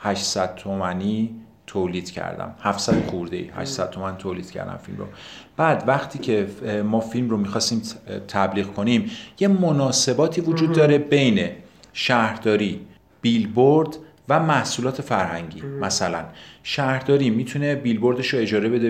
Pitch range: 105-135 Hz